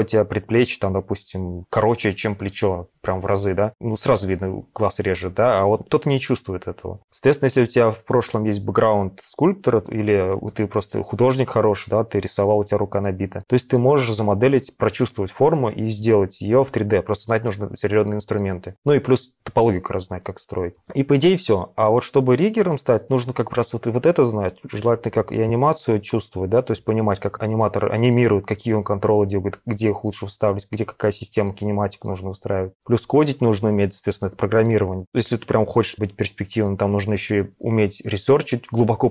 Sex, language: male, Russian